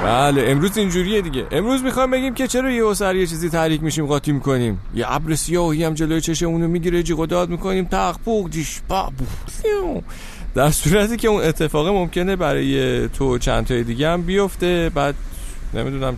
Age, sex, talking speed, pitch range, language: 40-59, male, 180 wpm, 115-160 Hz, Persian